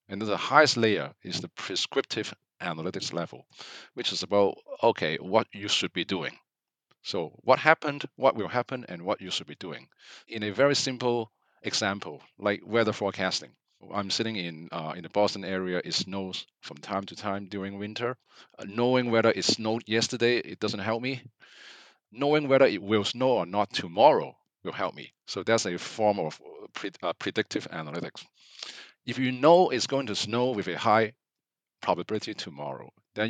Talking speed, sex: 175 wpm, male